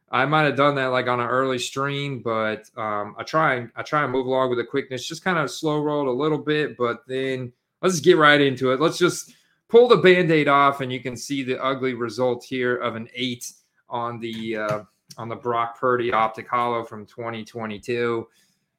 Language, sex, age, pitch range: English, male, 30-49, 120-145 Hz